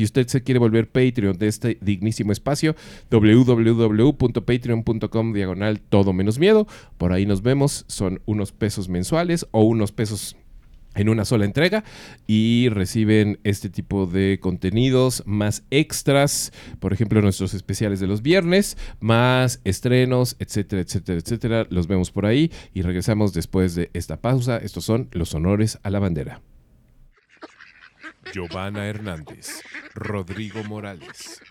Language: Spanish